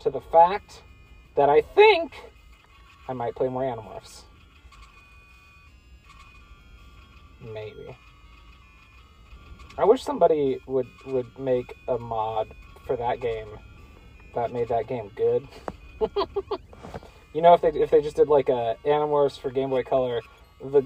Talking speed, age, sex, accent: 125 wpm, 30-49, male, American